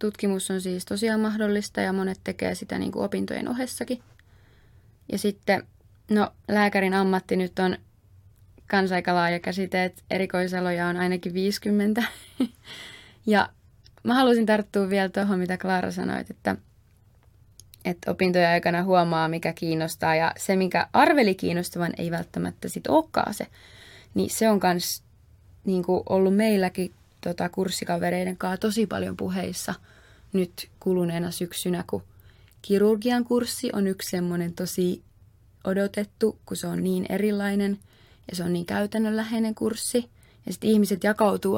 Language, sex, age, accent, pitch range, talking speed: Finnish, female, 20-39, native, 130-205 Hz, 135 wpm